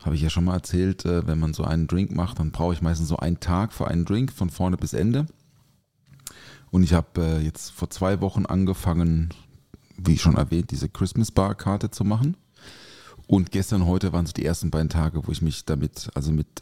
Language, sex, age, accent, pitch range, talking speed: German, male, 30-49, German, 85-110 Hz, 200 wpm